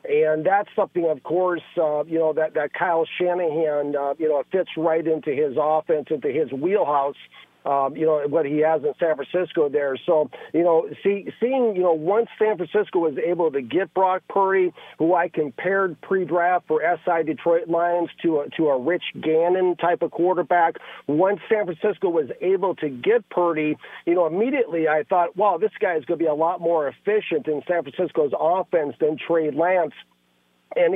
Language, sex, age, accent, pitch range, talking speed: English, male, 50-69, American, 155-185 Hz, 185 wpm